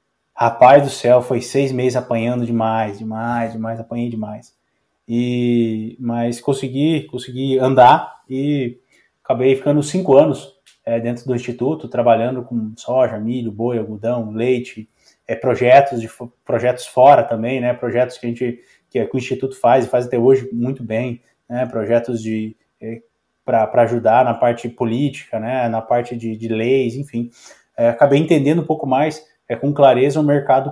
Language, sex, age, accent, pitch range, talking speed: Portuguese, male, 20-39, Brazilian, 120-145 Hz, 165 wpm